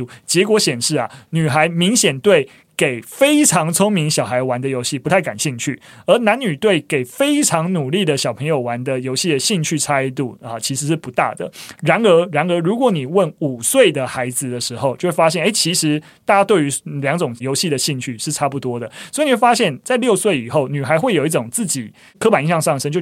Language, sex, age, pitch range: Chinese, male, 30-49, 125-170 Hz